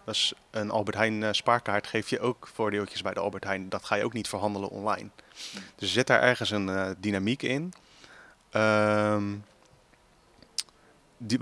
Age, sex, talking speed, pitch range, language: 30-49, male, 160 wpm, 100-115 Hz, Dutch